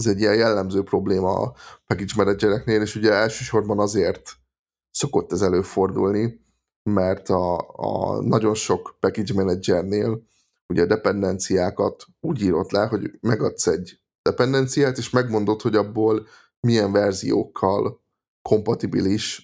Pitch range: 100-115 Hz